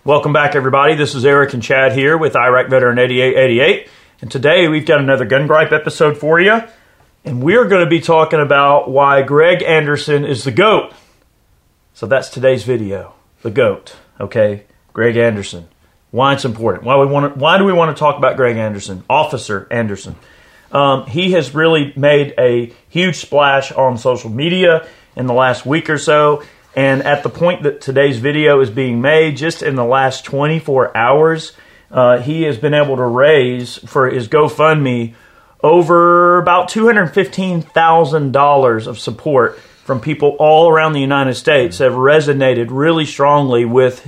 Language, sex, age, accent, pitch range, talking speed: English, male, 40-59, American, 125-155 Hz, 165 wpm